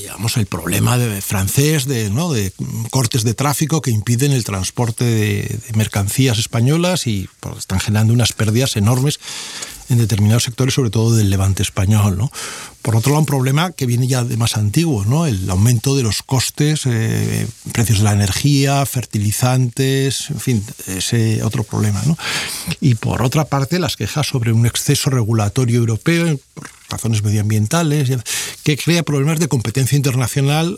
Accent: Spanish